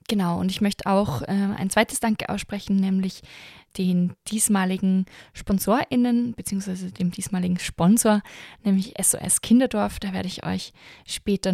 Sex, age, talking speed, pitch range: female, 20-39, 135 wpm, 185-210 Hz